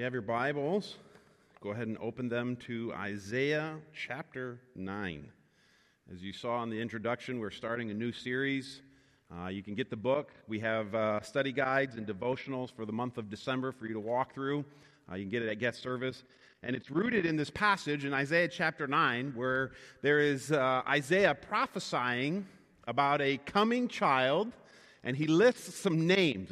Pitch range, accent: 125-165 Hz, American